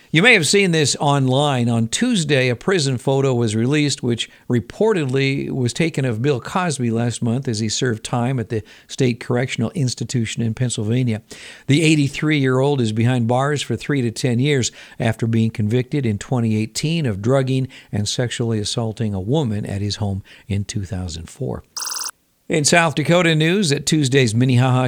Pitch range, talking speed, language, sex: 115-140 Hz, 160 wpm, Persian, male